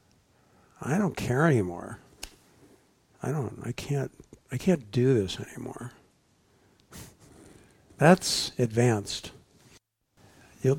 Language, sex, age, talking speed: English, male, 60-79, 90 wpm